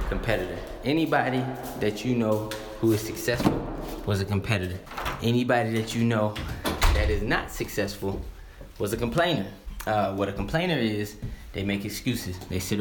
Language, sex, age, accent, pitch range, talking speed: English, male, 20-39, American, 100-115 Hz, 150 wpm